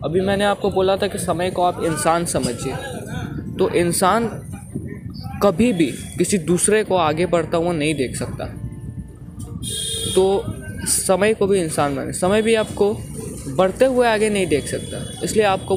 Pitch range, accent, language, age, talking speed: 145-195 Hz, native, Hindi, 20-39, 155 wpm